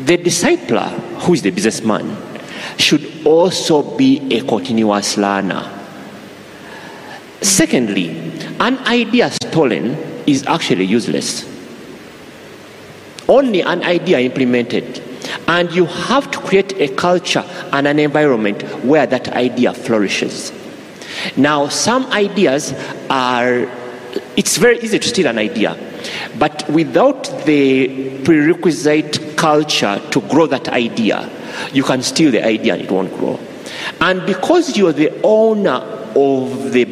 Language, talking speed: English, 120 wpm